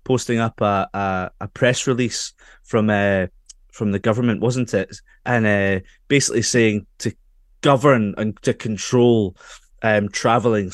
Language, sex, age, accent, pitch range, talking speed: English, male, 20-39, British, 110-150 Hz, 145 wpm